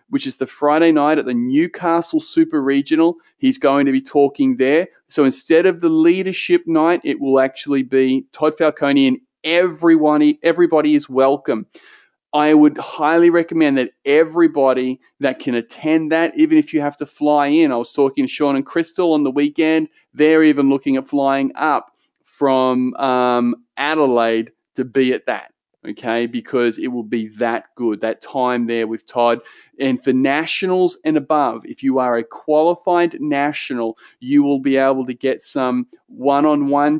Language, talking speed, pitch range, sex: English, 165 wpm, 125-155 Hz, male